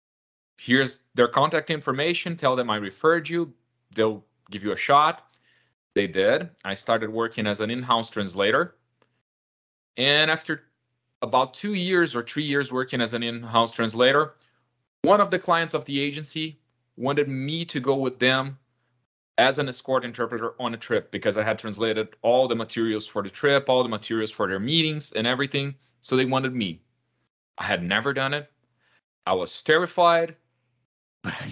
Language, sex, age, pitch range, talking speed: English, male, 30-49, 115-145 Hz, 165 wpm